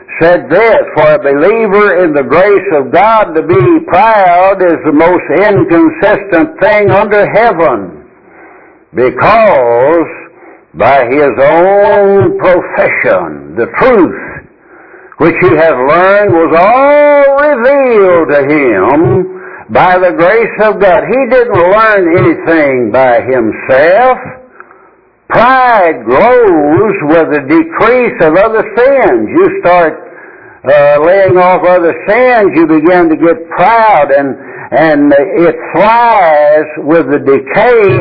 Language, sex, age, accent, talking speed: English, male, 60-79, American, 115 wpm